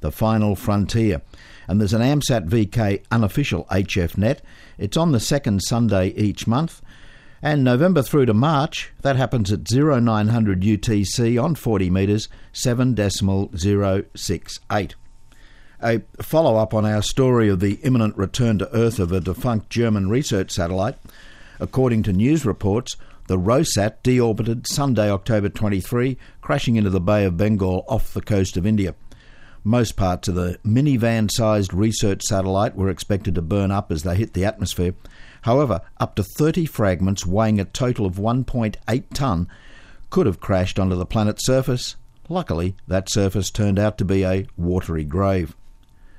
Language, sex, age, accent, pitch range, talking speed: English, male, 60-79, Australian, 95-120 Hz, 150 wpm